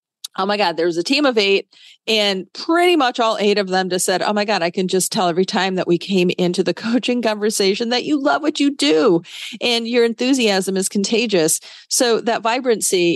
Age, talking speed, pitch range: 40-59, 220 wpm, 175-235 Hz